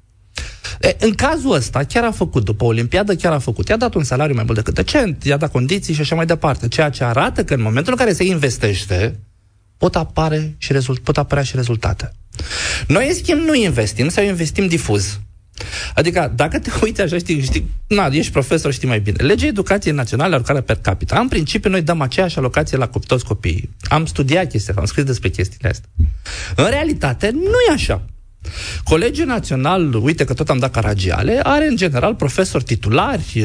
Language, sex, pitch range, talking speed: Romanian, male, 110-180 Hz, 190 wpm